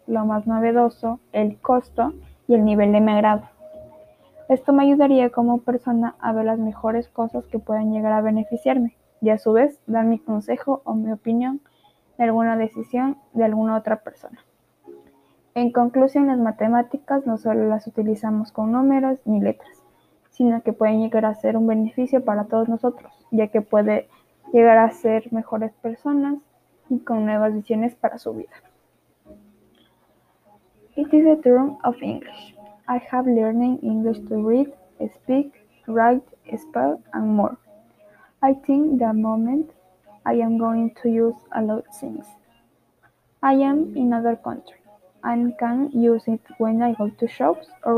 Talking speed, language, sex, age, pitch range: 160 wpm, Spanish, female, 10-29, 220-265 Hz